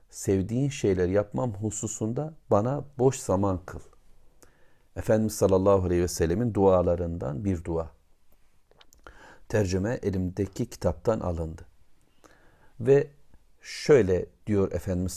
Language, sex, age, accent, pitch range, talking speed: Turkish, male, 50-69, native, 85-110 Hz, 95 wpm